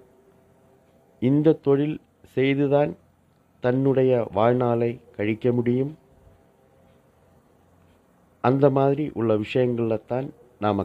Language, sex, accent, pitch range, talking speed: Tamil, male, native, 100-130 Hz, 70 wpm